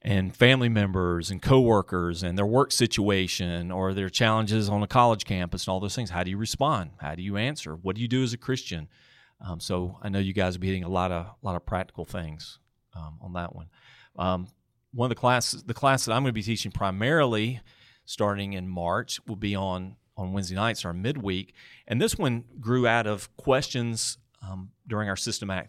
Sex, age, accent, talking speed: male, 40-59, American, 215 wpm